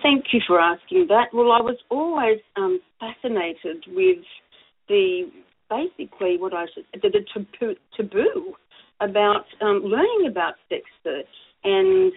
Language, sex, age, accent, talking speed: English, female, 50-69, Australian, 135 wpm